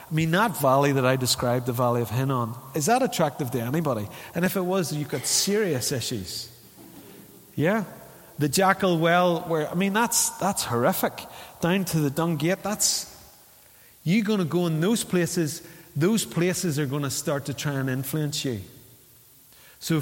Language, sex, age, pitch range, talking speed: English, male, 30-49, 125-170 Hz, 175 wpm